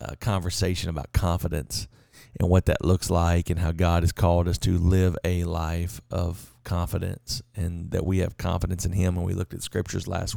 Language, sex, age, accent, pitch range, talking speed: English, male, 40-59, American, 90-110 Hz, 195 wpm